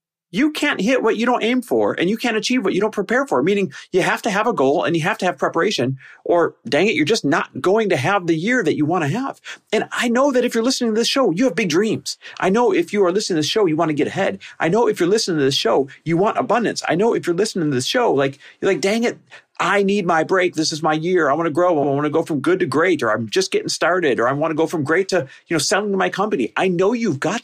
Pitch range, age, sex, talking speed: 160-255 Hz, 40-59, male, 305 wpm